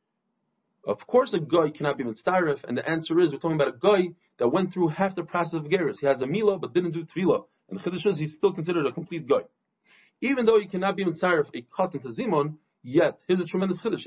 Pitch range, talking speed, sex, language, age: 165-210 Hz, 245 wpm, male, English, 40-59